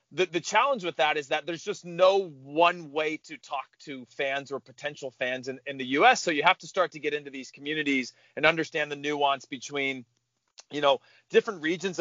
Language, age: English, 30-49